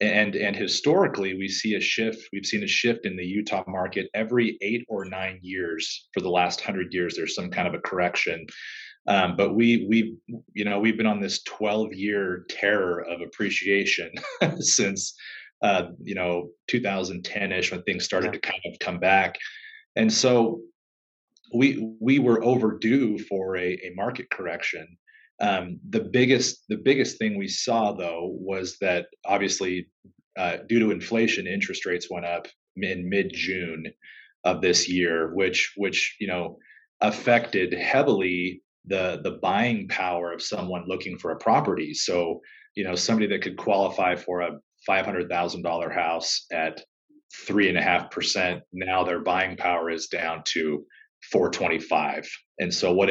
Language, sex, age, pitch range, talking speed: English, male, 30-49, 90-115 Hz, 165 wpm